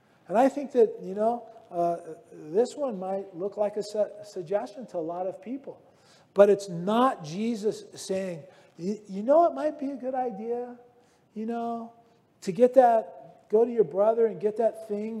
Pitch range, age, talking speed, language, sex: 170-230 Hz, 40-59, 180 wpm, English, male